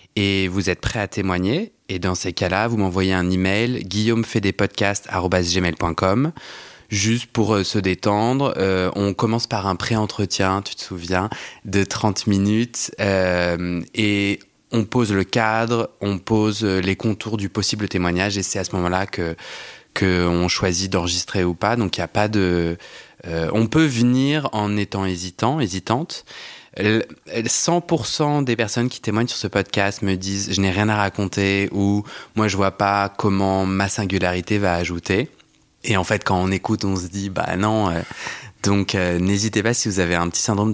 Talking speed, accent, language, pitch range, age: 185 wpm, French, French, 95-115 Hz, 20-39